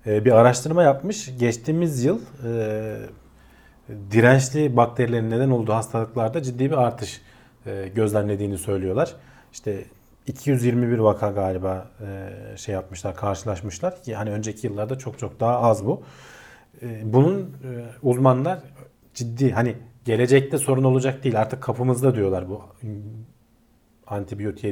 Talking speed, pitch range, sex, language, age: 120 wpm, 110-130 Hz, male, Turkish, 40-59